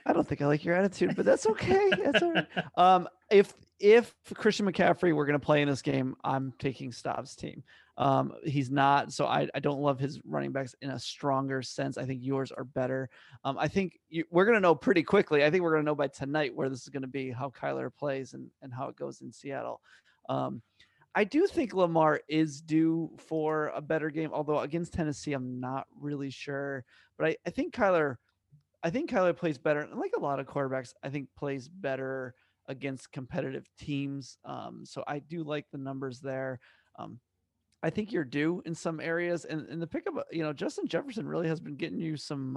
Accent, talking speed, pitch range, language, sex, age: American, 215 wpm, 135-170 Hz, English, male, 30-49